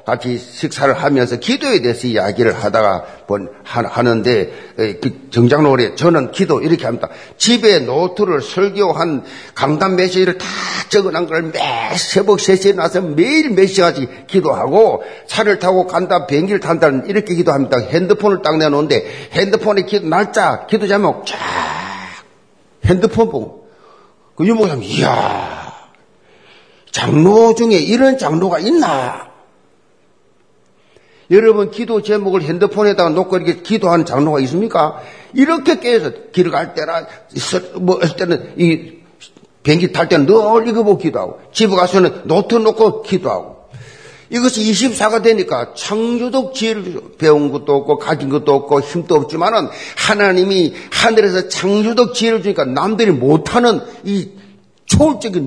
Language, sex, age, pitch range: Korean, male, 50-69, 155-220 Hz